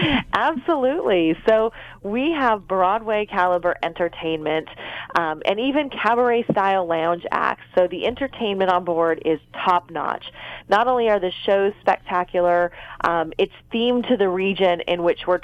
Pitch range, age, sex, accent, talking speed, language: 175-225 Hz, 30-49, female, American, 145 wpm, English